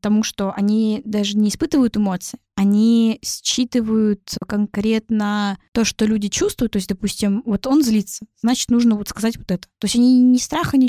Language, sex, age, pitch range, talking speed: Russian, female, 20-39, 205-235 Hz, 175 wpm